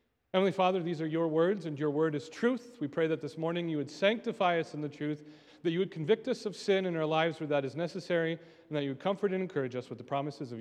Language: English